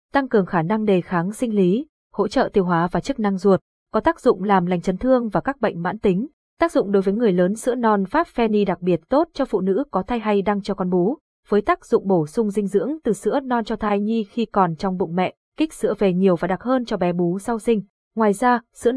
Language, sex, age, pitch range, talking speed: Vietnamese, female, 20-39, 185-235 Hz, 265 wpm